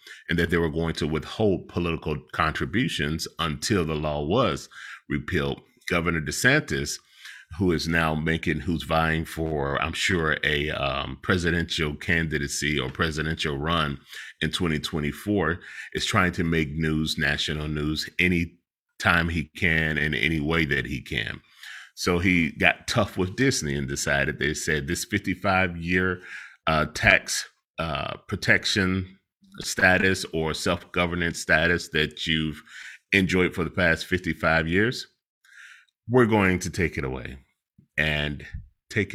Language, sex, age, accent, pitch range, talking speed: English, male, 30-49, American, 75-90 Hz, 130 wpm